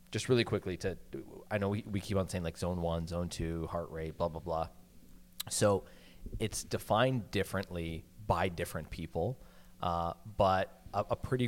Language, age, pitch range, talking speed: English, 30-49, 85-100 Hz, 175 wpm